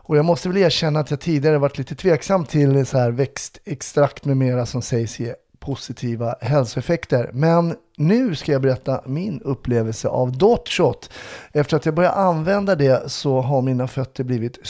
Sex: male